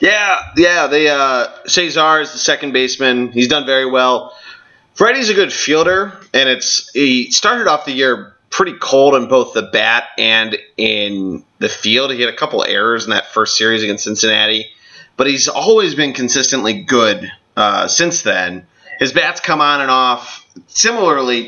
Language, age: English, 30-49